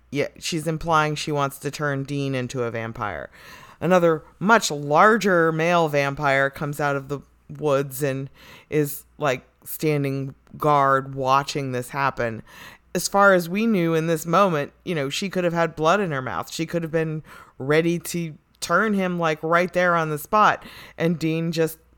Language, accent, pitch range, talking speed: English, American, 140-175 Hz, 175 wpm